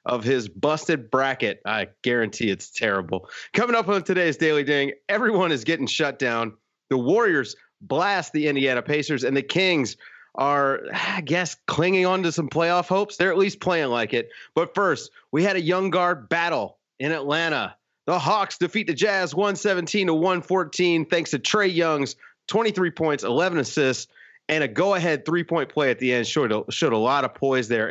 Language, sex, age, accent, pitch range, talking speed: English, male, 30-49, American, 120-170 Hz, 185 wpm